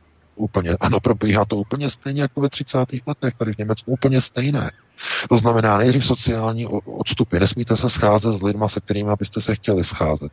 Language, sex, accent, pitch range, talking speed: Czech, male, native, 85-105 Hz, 180 wpm